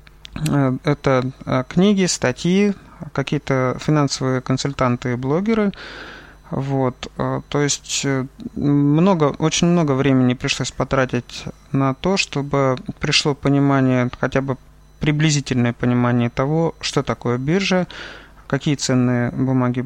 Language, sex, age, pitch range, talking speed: Russian, male, 30-49, 130-160 Hz, 100 wpm